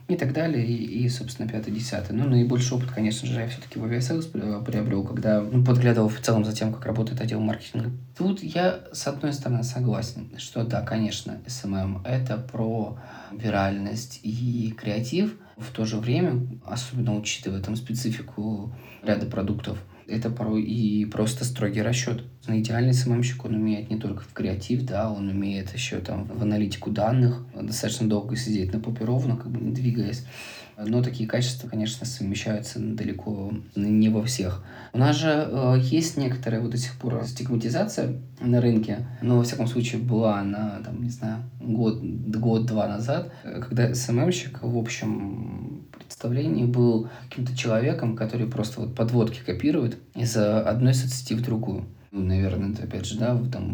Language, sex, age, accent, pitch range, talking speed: Russian, male, 20-39, native, 110-125 Hz, 165 wpm